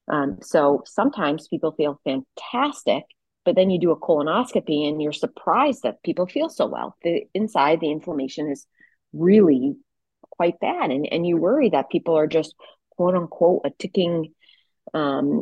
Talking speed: 160 wpm